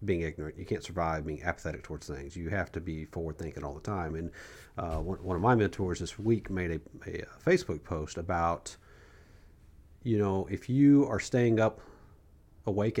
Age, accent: 40-59, American